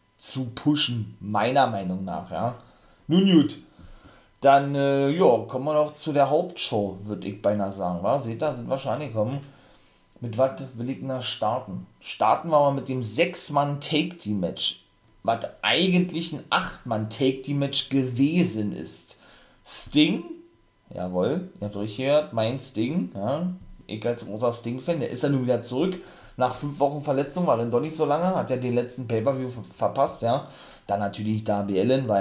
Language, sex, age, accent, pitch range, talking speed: German, male, 30-49, German, 110-145 Hz, 170 wpm